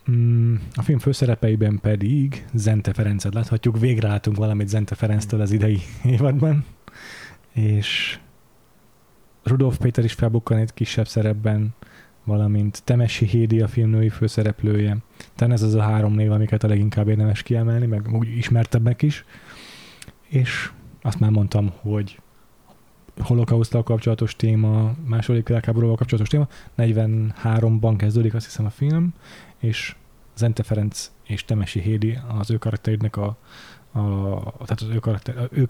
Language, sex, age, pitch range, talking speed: Hungarian, male, 20-39, 105-115 Hz, 130 wpm